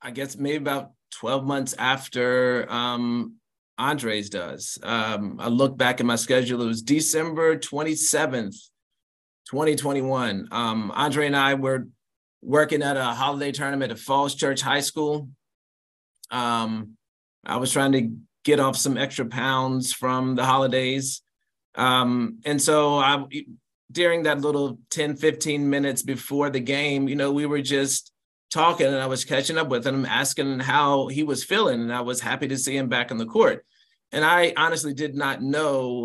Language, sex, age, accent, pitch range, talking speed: English, male, 30-49, American, 125-145 Hz, 165 wpm